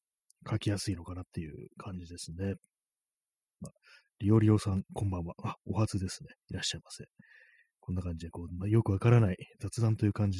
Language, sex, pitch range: Japanese, male, 90-120 Hz